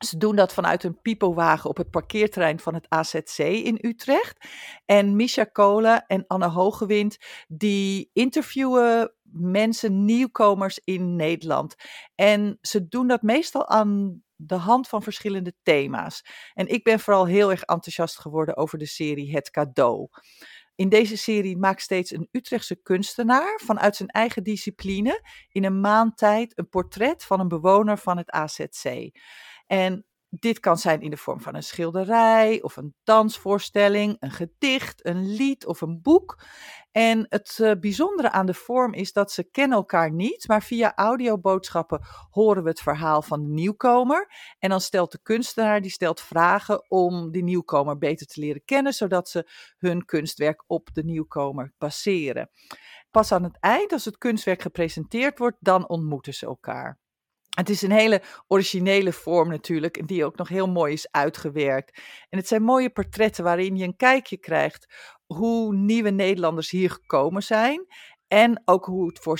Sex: female